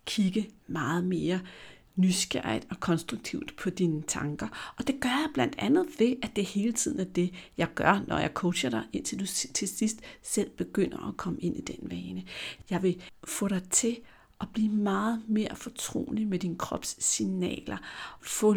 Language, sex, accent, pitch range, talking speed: Danish, female, native, 170-215 Hz, 175 wpm